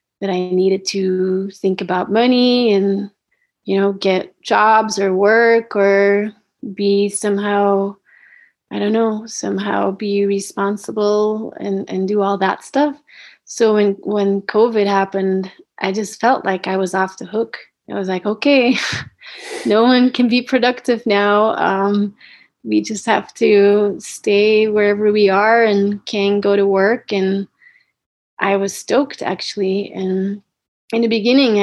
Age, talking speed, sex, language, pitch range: 30-49, 145 wpm, female, English, 195-220 Hz